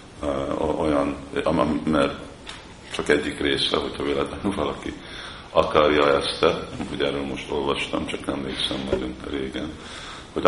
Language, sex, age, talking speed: Hungarian, male, 50-69, 110 wpm